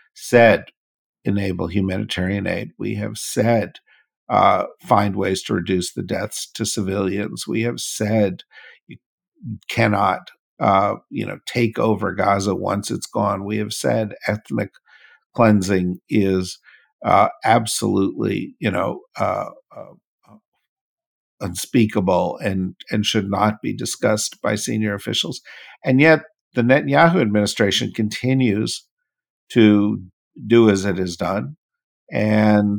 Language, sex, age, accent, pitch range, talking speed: English, male, 50-69, American, 100-125 Hz, 120 wpm